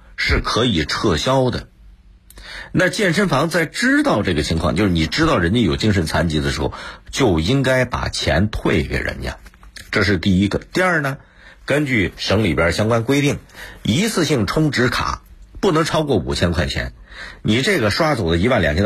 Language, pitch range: Chinese, 75-120 Hz